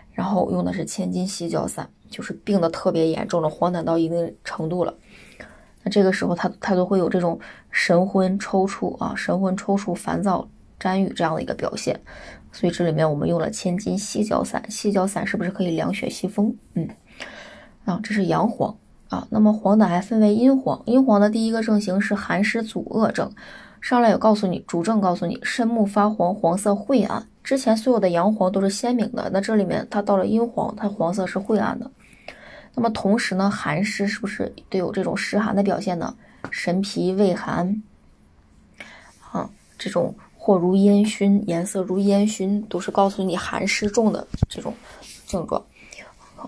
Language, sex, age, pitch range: Chinese, female, 20-39, 185-215 Hz